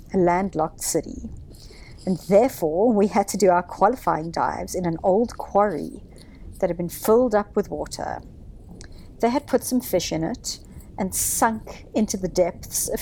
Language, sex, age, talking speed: English, female, 50-69, 165 wpm